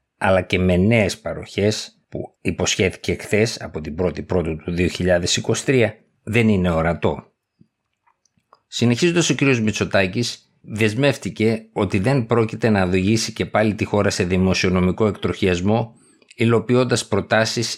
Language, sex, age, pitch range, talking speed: Greek, male, 50-69, 95-115 Hz, 120 wpm